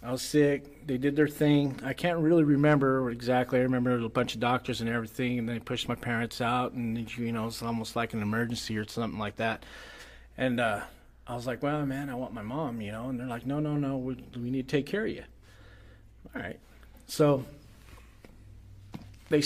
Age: 40-59